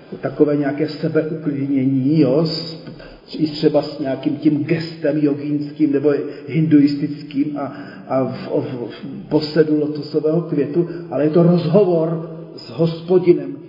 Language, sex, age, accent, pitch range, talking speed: Czech, male, 40-59, native, 145-165 Hz, 115 wpm